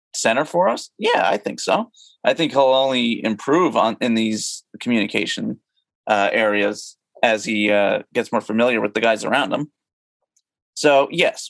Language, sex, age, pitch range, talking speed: English, male, 30-49, 115-160 Hz, 160 wpm